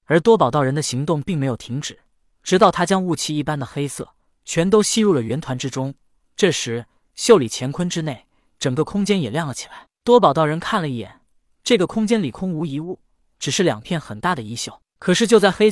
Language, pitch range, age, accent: Chinese, 135-200 Hz, 20-39, native